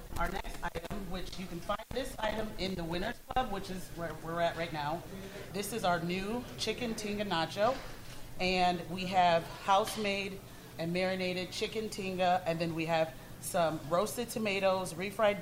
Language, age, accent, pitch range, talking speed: English, 30-49, American, 165-200 Hz, 165 wpm